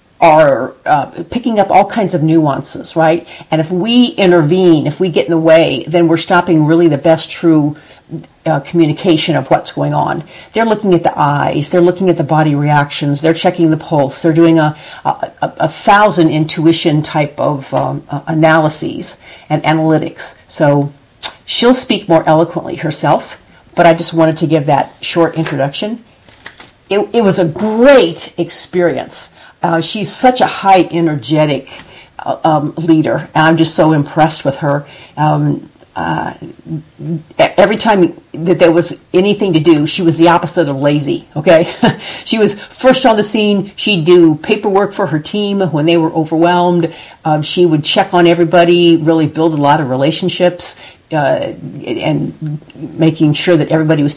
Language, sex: English, female